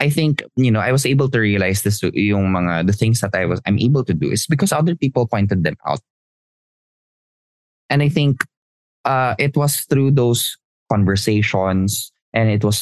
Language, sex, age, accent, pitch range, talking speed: Filipino, male, 20-39, native, 90-130 Hz, 180 wpm